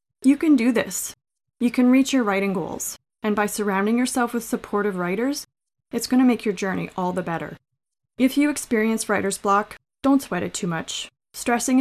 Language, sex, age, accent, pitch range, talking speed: English, female, 20-39, American, 180-240 Hz, 190 wpm